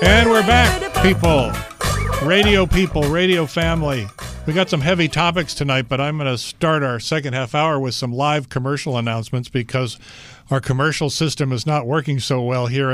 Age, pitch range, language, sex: 50-69, 125-160 Hz, English, male